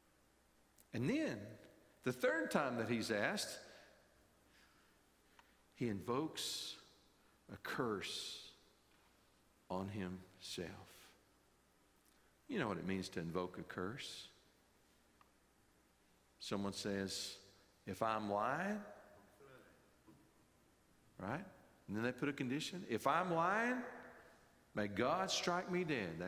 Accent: American